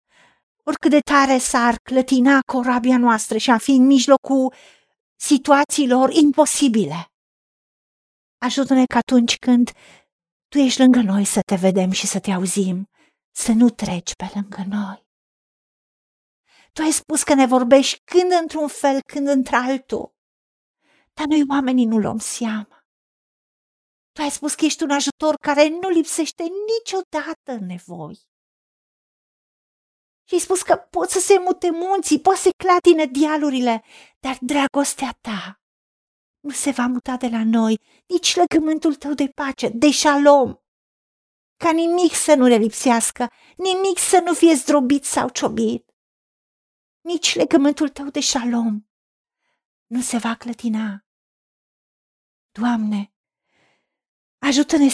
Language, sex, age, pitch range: Romanian, female, 50-69, 235-305 Hz